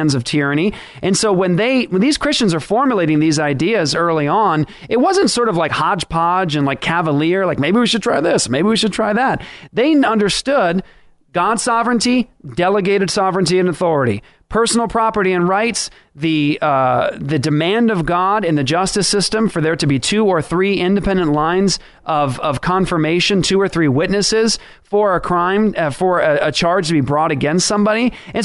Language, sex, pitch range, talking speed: English, male, 160-210 Hz, 185 wpm